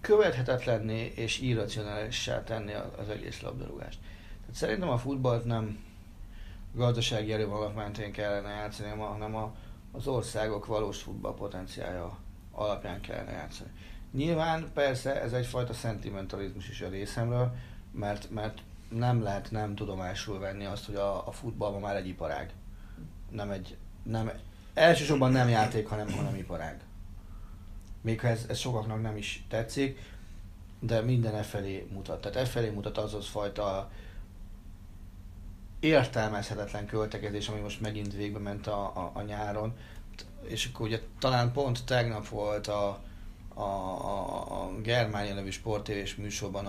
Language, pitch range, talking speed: Hungarian, 100-115 Hz, 130 wpm